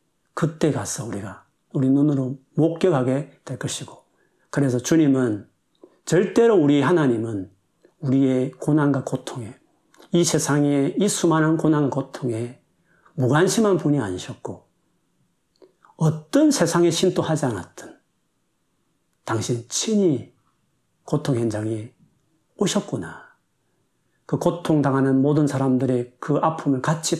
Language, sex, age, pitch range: Korean, male, 40-59, 130-175 Hz